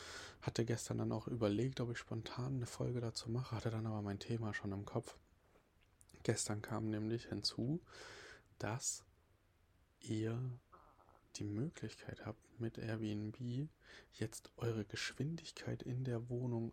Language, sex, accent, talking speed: German, male, German, 135 wpm